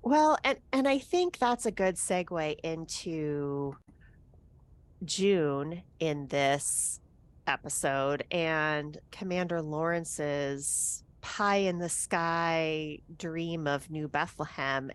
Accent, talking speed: American, 100 wpm